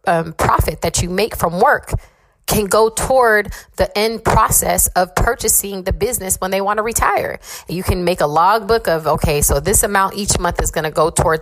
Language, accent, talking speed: English, American, 205 wpm